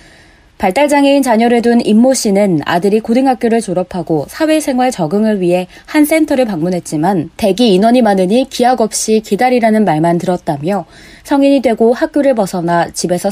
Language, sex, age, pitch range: Korean, female, 20-39, 180-245 Hz